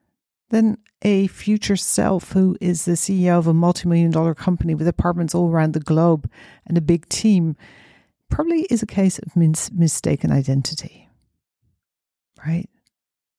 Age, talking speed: 40-59, 140 wpm